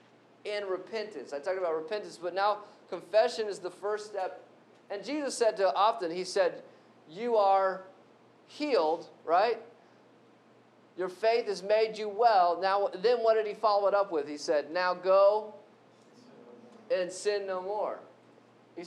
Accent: American